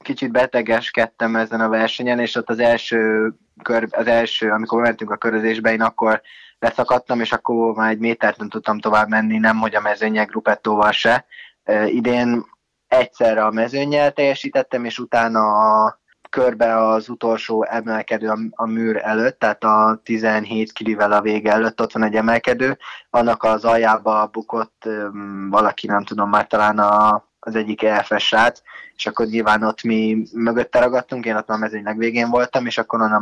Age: 20-39